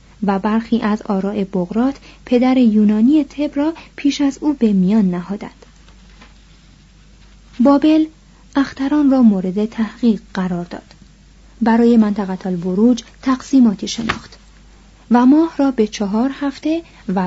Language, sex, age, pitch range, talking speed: Persian, female, 30-49, 200-270 Hz, 120 wpm